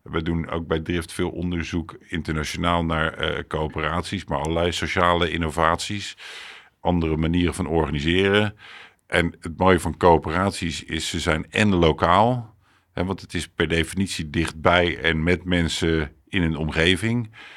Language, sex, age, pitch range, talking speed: Dutch, male, 50-69, 80-90 Hz, 145 wpm